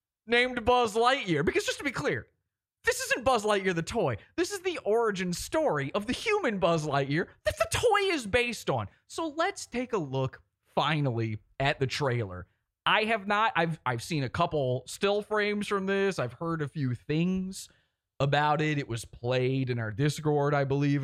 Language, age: English, 20-39